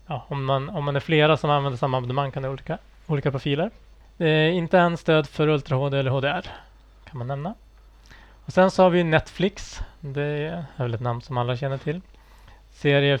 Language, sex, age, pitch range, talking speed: Swedish, male, 20-39, 130-155 Hz, 200 wpm